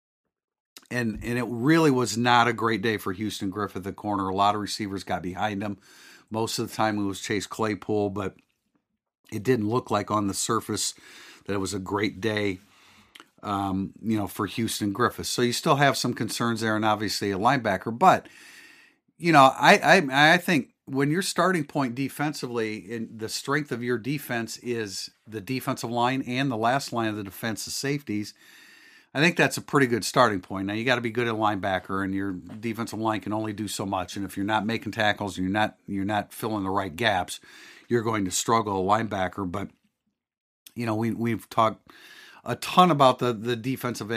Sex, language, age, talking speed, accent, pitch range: male, English, 50-69, 200 wpm, American, 105-125 Hz